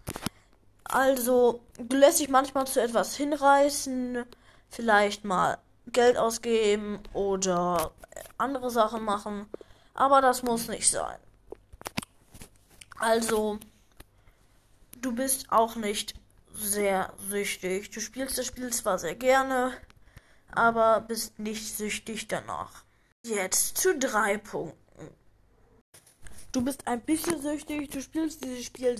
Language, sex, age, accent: German, female, 20-39, German